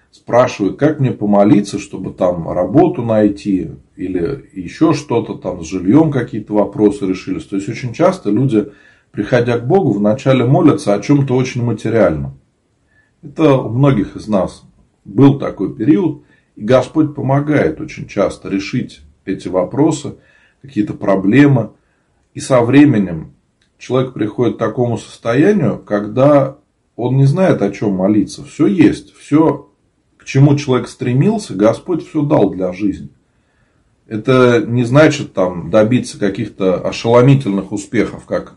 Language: Russian